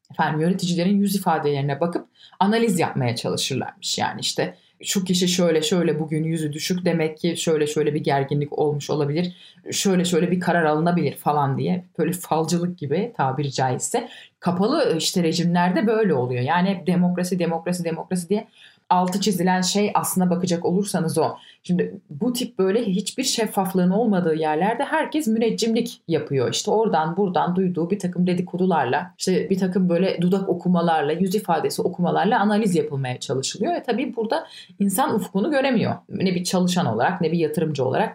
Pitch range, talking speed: 160-205 Hz, 155 wpm